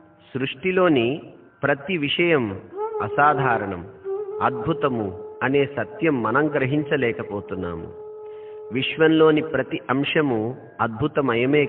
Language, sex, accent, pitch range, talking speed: Telugu, male, native, 115-165 Hz, 65 wpm